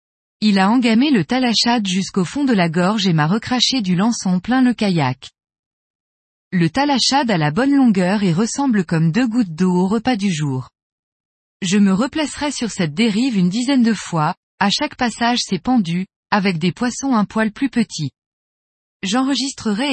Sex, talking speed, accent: female, 170 wpm, French